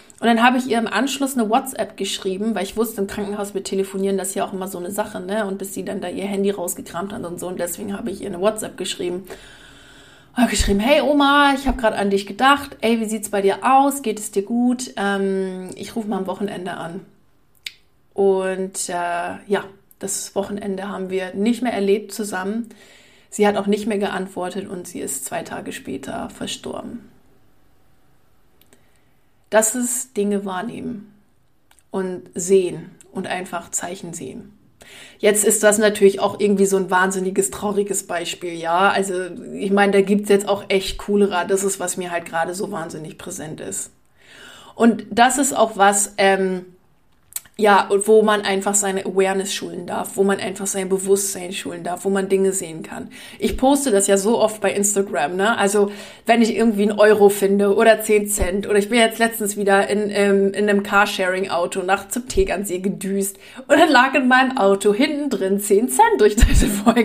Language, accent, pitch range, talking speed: German, German, 195-220 Hz, 190 wpm